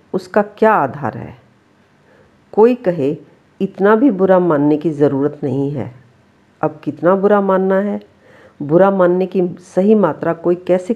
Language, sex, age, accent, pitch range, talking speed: Hindi, female, 50-69, native, 160-195 Hz, 140 wpm